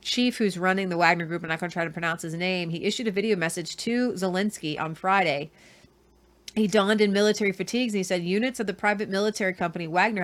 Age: 30-49